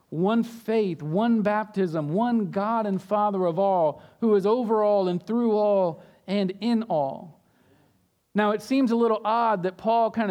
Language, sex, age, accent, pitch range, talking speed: English, male, 40-59, American, 190-235 Hz, 170 wpm